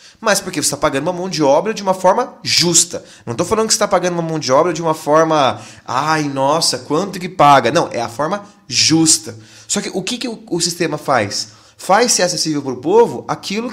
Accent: Brazilian